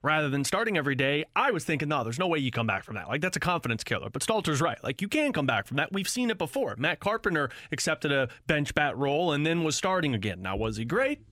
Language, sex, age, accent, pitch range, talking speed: English, male, 30-49, American, 130-175 Hz, 275 wpm